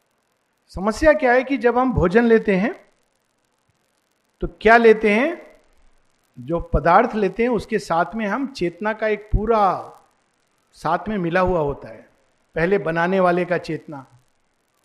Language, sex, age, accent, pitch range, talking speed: Hindi, male, 50-69, native, 175-240 Hz, 145 wpm